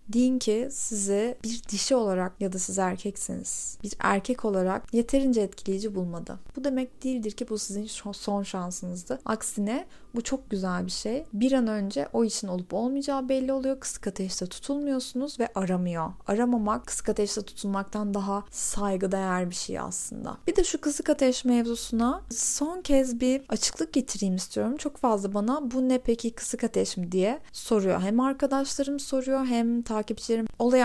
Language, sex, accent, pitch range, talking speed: Turkish, female, native, 200-260 Hz, 160 wpm